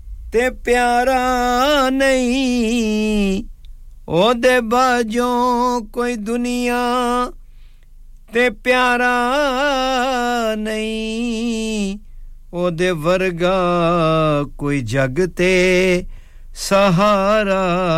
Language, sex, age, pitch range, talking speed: English, male, 50-69, 165-240 Hz, 50 wpm